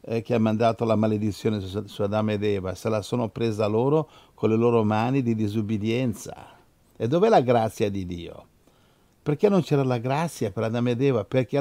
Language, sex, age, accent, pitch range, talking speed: Italian, male, 60-79, native, 110-150 Hz, 185 wpm